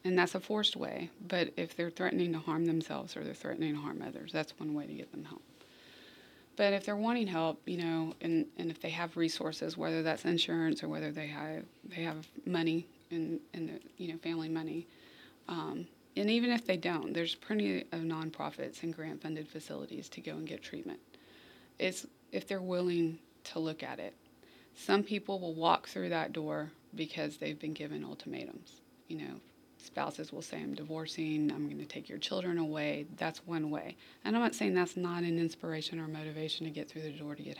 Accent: American